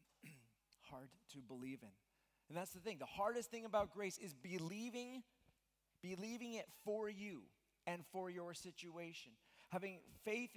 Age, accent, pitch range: 40-59, American, 140-205 Hz